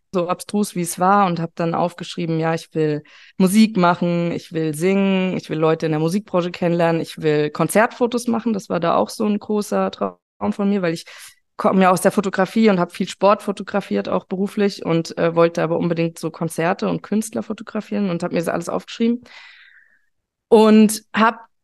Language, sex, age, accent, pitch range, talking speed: German, female, 20-39, German, 185-230 Hz, 195 wpm